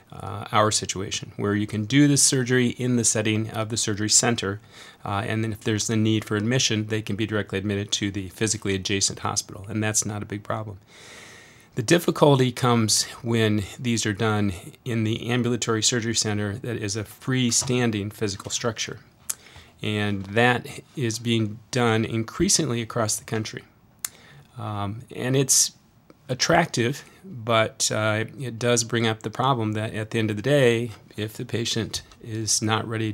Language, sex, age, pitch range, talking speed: English, male, 30-49, 105-120 Hz, 170 wpm